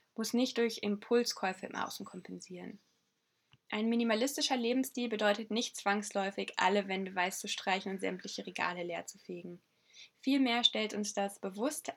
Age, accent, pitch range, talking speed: 10-29, German, 200-235 Hz, 145 wpm